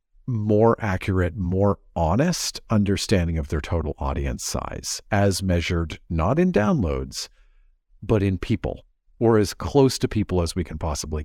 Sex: male